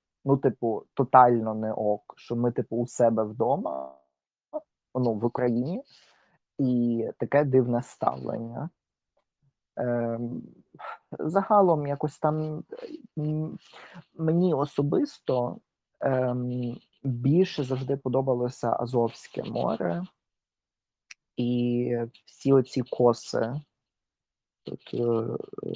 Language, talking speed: Ukrainian, 80 wpm